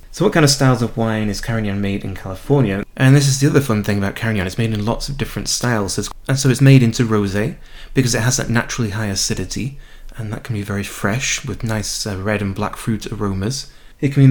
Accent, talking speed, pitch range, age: British, 240 wpm, 100-125 Hz, 30-49